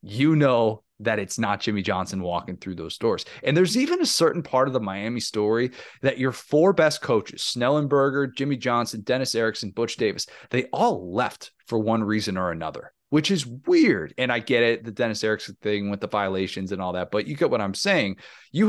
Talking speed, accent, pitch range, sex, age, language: 210 wpm, American, 100-130 Hz, male, 30-49, English